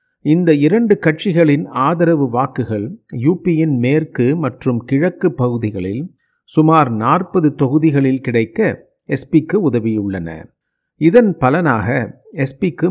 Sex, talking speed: male, 90 wpm